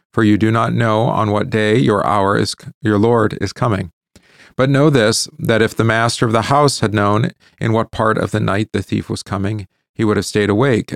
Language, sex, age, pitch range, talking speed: English, male, 40-59, 95-115 Hz, 230 wpm